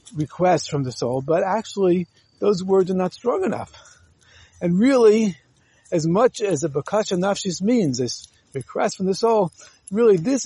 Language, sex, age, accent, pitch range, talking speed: English, male, 60-79, American, 140-200 Hz, 160 wpm